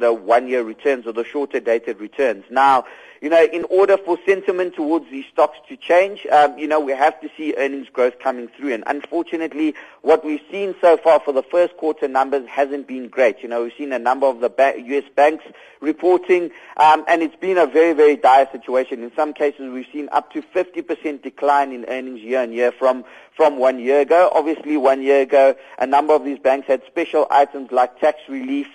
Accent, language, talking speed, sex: South African, English, 205 wpm, male